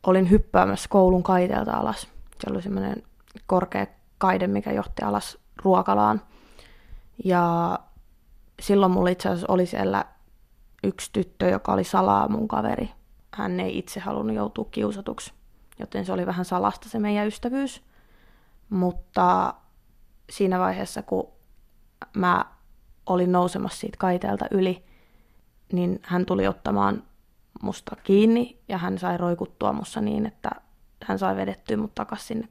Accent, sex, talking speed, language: native, female, 130 wpm, Finnish